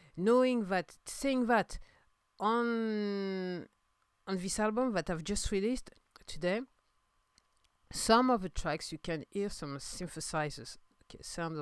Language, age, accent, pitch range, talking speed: English, 50-69, French, 150-205 Hz, 125 wpm